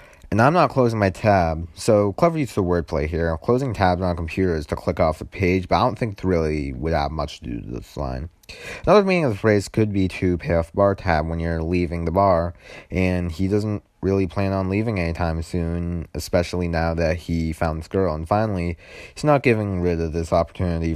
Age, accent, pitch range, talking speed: 30-49, American, 80-95 Hz, 230 wpm